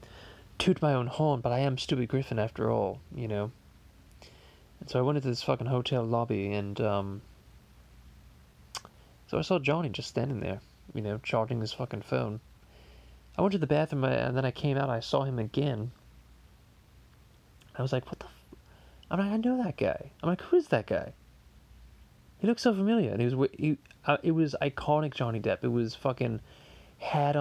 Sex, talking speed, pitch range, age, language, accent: male, 195 wpm, 110-135 Hz, 20-39, English, American